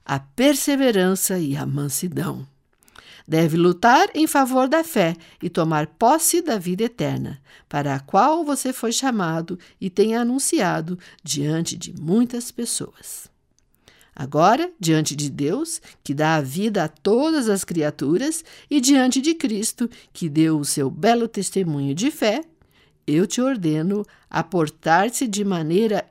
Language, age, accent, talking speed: Portuguese, 60-79, Brazilian, 140 wpm